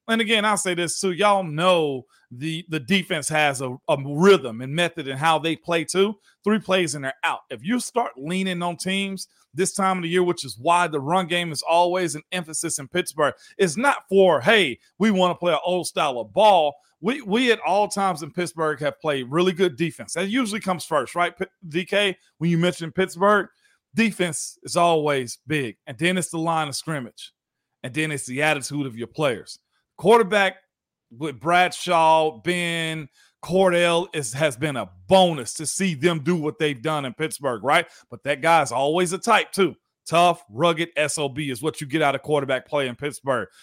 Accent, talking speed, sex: American, 200 wpm, male